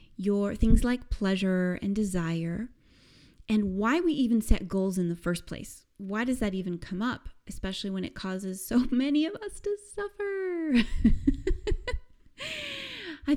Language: English